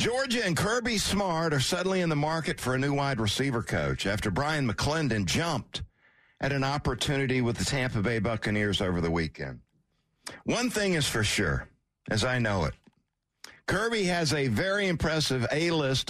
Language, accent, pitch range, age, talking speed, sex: English, American, 115-165 Hz, 60-79, 170 wpm, male